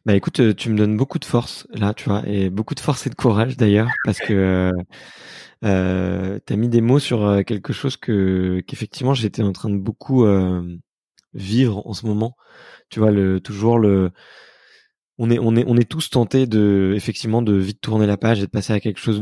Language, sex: French, male